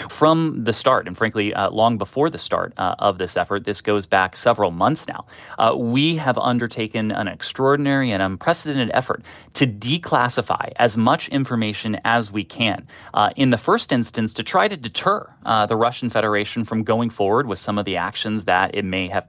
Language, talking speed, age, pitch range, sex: English, 195 wpm, 30-49, 105-125 Hz, male